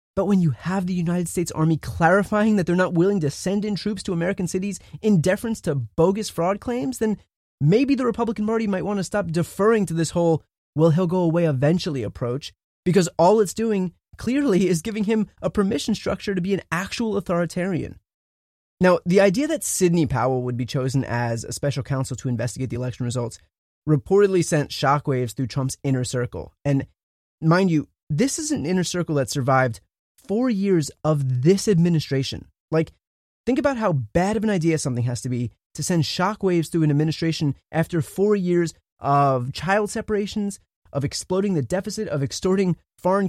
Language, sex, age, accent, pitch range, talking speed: English, male, 20-39, American, 145-200 Hz, 185 wpm